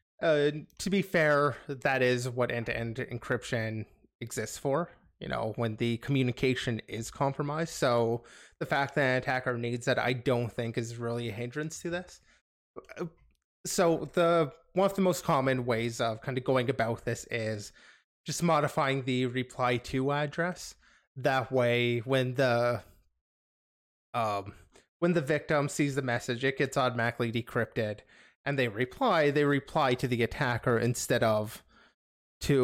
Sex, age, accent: male, 20-39, American